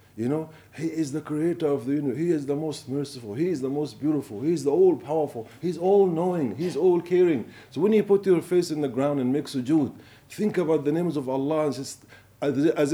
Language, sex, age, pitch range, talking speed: English, male, 50-69, 135-170 Hz, 225 wpm